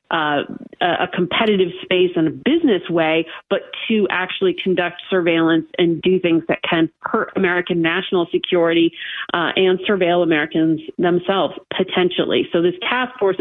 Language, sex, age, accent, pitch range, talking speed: English, female, 40-59, American, 170-205 Hz, 145 wpm